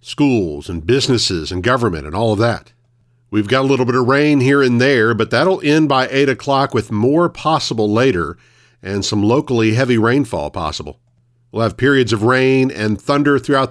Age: 50-69